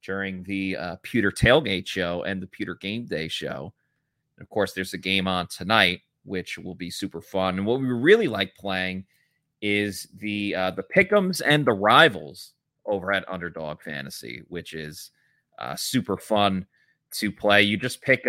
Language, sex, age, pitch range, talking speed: English, male, 30-49, 95-130 Hz, 175 wpm